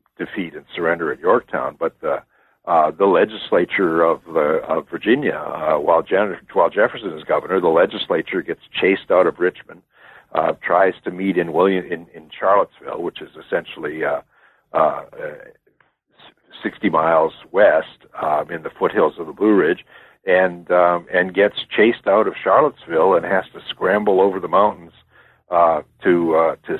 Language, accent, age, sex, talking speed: English, American, 60-79, male, 165 wpm